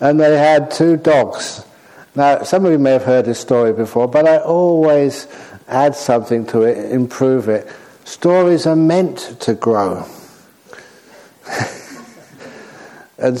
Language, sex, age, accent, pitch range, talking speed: English, male, 60-79, British, 120-150 Hz, 135 wpm